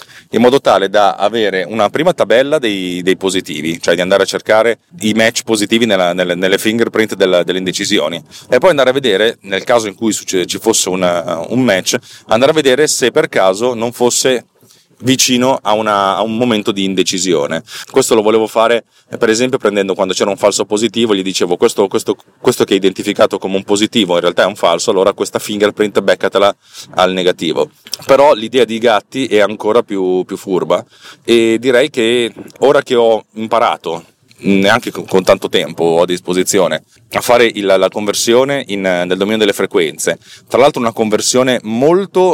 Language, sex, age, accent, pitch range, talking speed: Italian, male, 30-49, native, 95-120 Hz, 175 wpm